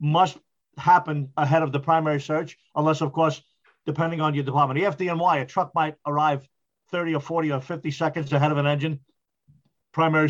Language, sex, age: English, male, 50-69